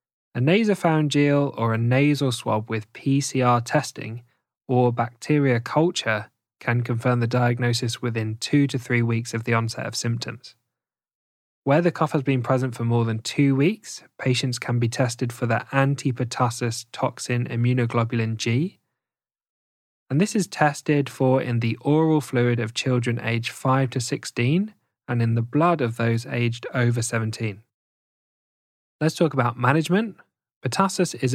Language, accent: English, British